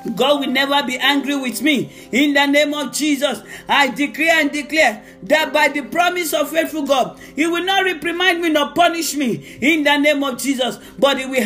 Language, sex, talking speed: English, male, 205 wpm